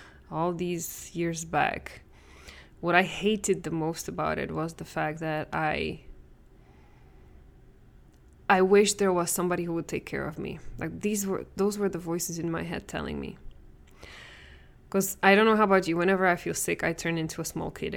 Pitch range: 160-195 Hz